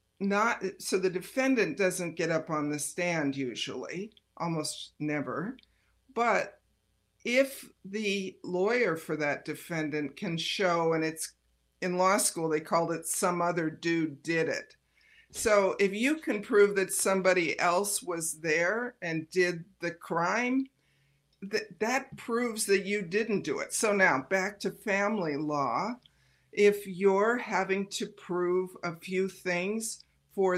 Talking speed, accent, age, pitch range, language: 140 wpm, American, 50-69, 160-200 Hz, English